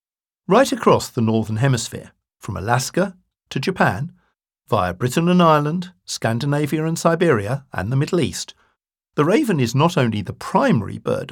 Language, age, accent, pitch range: English, 60-79, British, 115-145 Hz